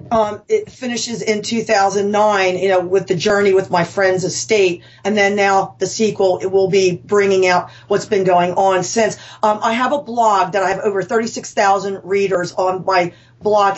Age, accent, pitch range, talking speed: 40-59, American, 190-210 Hz, 205 wpm